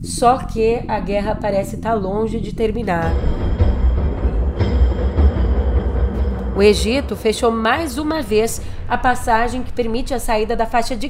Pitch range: 205-250 Hz